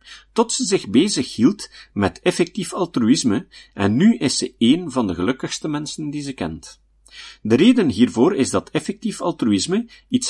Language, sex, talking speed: Dutch, male, 165 wpm